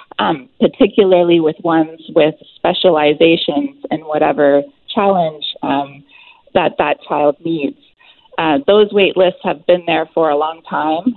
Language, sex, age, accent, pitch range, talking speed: English, female, 30-49, American, 155-190 Hz, 135 wpm